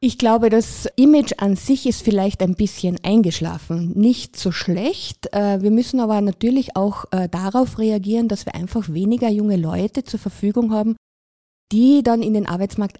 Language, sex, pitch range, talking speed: German, female, 185-240 Hz, 160 wpm